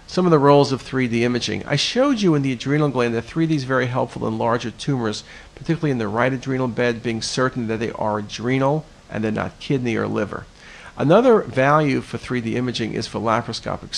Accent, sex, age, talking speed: American, male, 50-69, 205 wpm